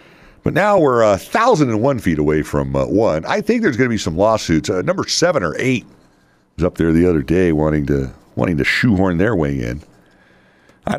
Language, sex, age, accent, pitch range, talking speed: English, male, 60-79, American, 75-105 Hz, 225 wpm